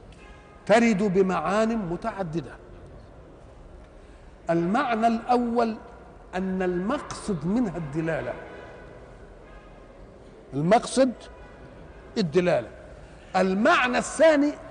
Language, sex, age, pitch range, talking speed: Arabic, male, 50-69, 170-235 Hz, 50 wpm